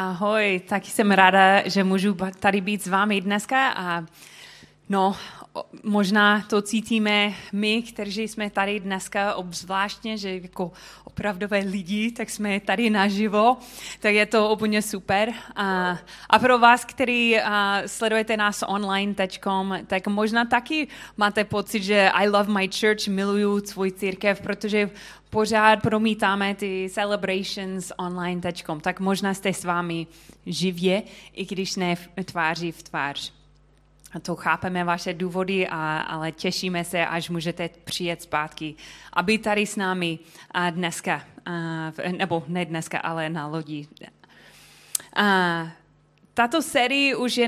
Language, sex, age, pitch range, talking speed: Czech, female, 20-39, 180-210 Hz, 130 wpm